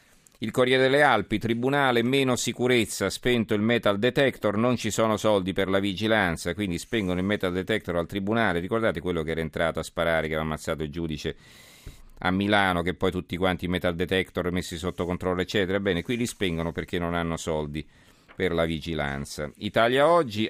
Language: Italian